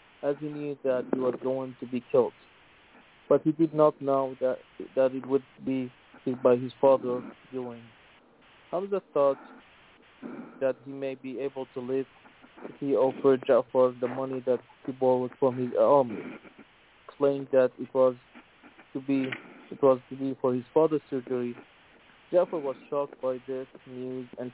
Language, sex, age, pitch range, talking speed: English, male, 20-39, 130-140 Hz, 160 wpm